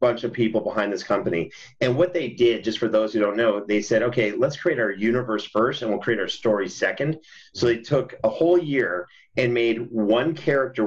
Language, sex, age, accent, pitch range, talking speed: English, male, 40-59, American, 110-140 Hz, 220 wpm